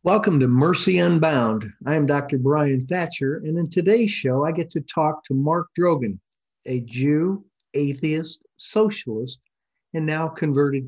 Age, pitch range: 50-69, 130-190 Hz